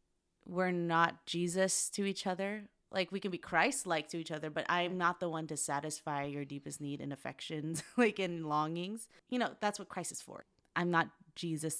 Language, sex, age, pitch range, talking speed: English, female, 20-39, 155-190 Hz, 200 wpm